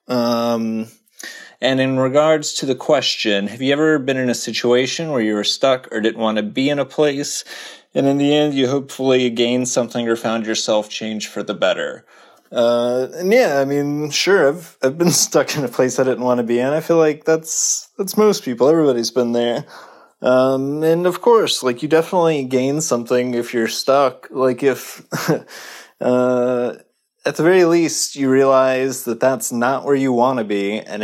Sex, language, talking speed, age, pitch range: male, English, 195 wpm, 20-39, 120-155 Hz